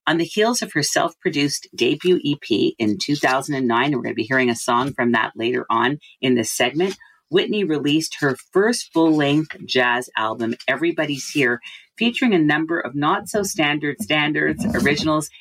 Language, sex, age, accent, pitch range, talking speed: English, female, 40-59, American, 125-175 Hz, 160 wpm